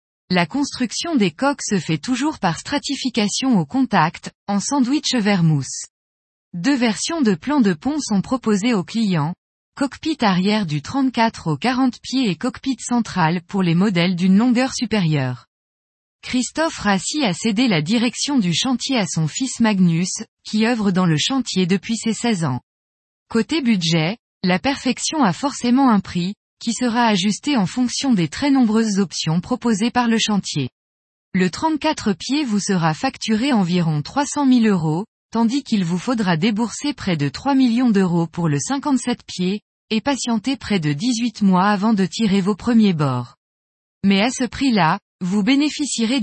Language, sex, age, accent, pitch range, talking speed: French, female, 20-39, French, 180-255 Hz, 160 wpm